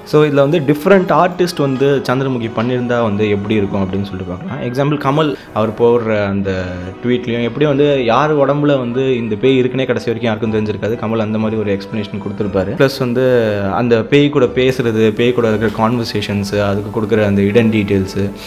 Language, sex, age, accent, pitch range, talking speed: Tamil, male, 20-39, native, 105-130 Hz, 135 wpm